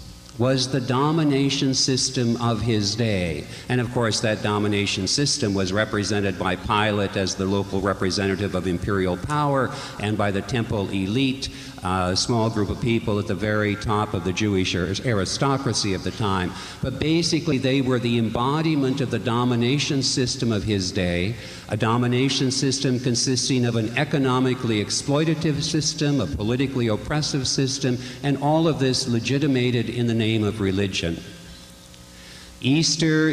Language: English